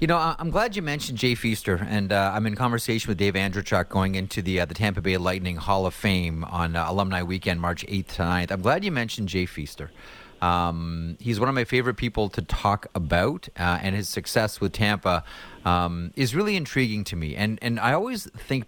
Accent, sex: American, male